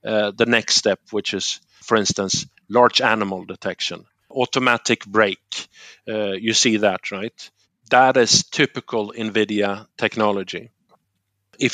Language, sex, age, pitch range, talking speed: Finnish, male, 50-69, 105-115 Hz, 125 wpm